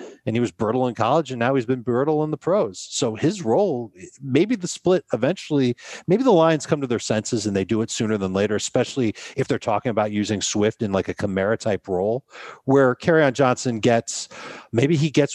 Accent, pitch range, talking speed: American, 90-125 Hz, 215 wpm